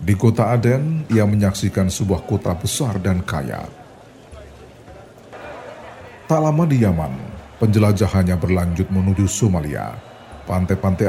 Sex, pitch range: male, 90-110 Hz